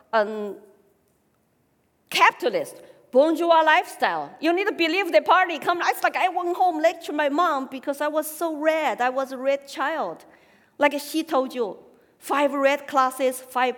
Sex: female